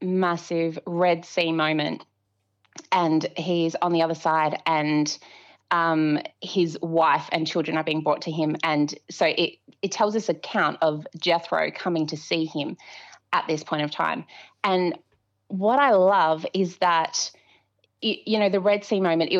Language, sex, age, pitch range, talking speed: English, female, 20-39, 160-195 Hz, 160 wpm